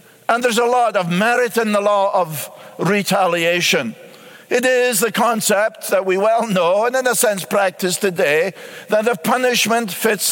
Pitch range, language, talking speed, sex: 185-225 Hz, English, 170 wpm, male